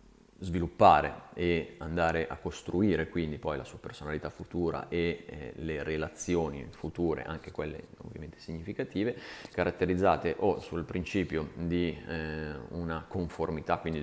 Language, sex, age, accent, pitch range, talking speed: Italian, male, 30-49, native, 75-85 Hz, 125 wpm